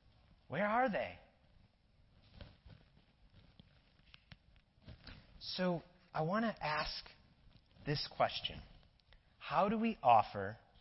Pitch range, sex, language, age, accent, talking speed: 125-180 Hz, male, English, 30-49, American, 80 wpm